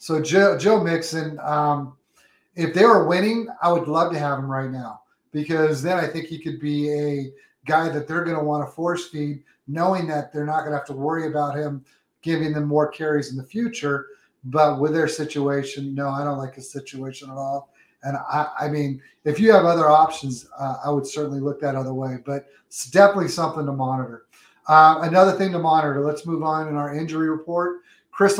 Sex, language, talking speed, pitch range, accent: male, English, 210 wpm, 145-170 Hz, American